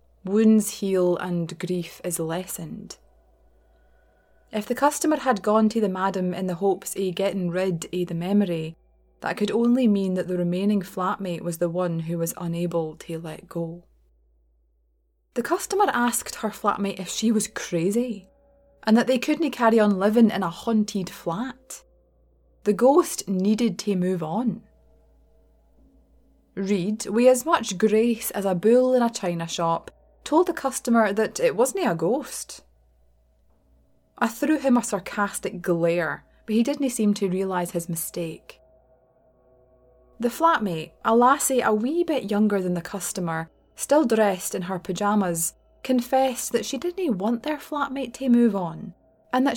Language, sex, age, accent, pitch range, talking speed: English, female, 20-39, British, 170-235 Hz, 155 wpm